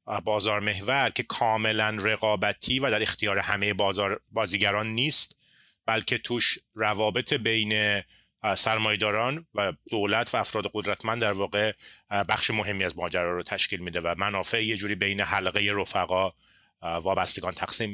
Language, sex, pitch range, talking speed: Persian, male, 105-135 Hz, 135 wpm